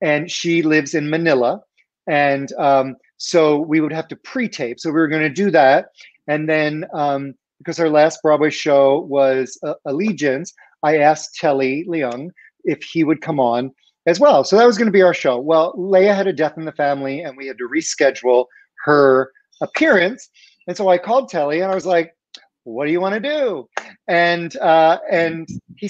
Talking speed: 195 wpm